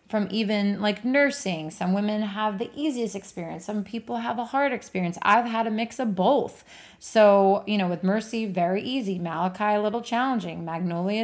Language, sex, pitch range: English, female, 185-215 Hz